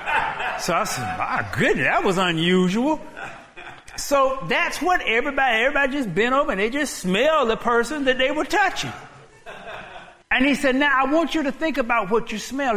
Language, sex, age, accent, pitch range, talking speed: English, male, 50-69, American, 215-285 Hz, 185 wpm